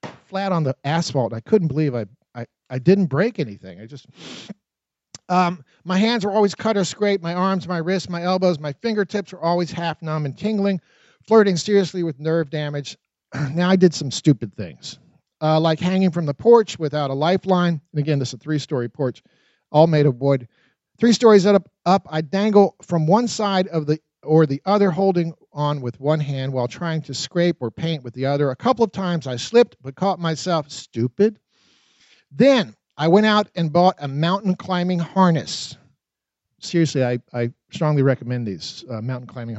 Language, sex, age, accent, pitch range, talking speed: English, male, 50-69, American, 140-195 Hz, 190 wpm